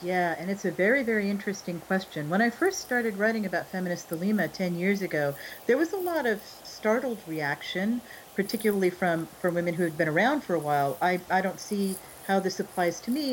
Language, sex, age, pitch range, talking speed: English, female, 40-59, 170-215 Hz, 210 wpm